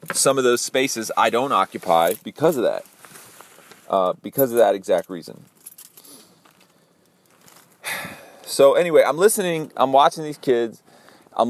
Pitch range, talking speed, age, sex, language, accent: 90-135 Hz, 130 wpm, 30-49, male, English, American